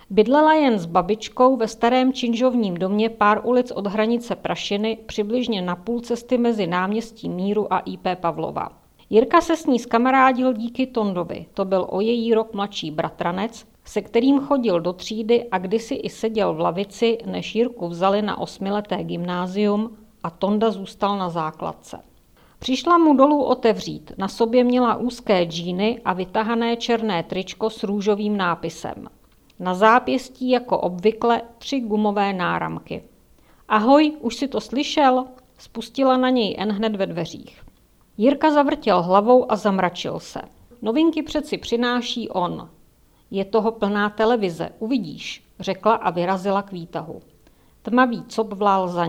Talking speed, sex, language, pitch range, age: 145 wpm, female, Czech, 195-240 Hz, 50-69